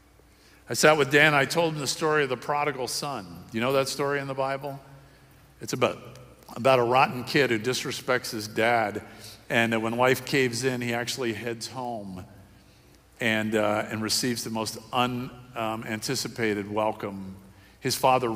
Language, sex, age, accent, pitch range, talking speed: English, male, 50-69, American, 110-145 Hz, 165 wpm